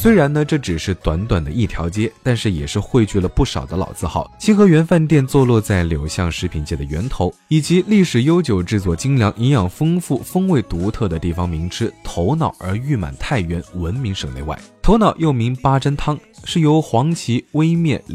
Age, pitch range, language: 20-39, 85-140 Hz, Chinese